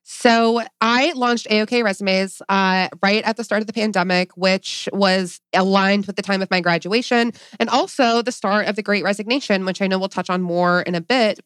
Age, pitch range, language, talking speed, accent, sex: 20-39, 170-200 Hz, English, 215 wpm, American, female